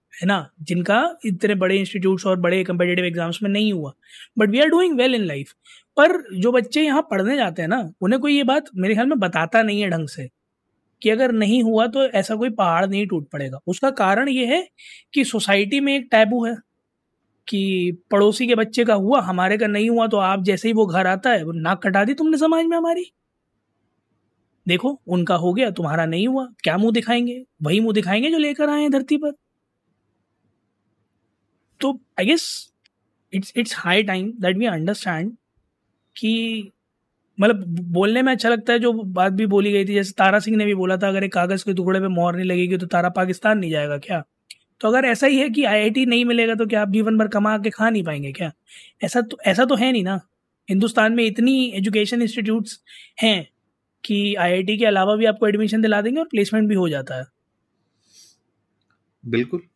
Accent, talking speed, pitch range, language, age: native, 200 wpm, 180-240 Hz, Hindi, 20-39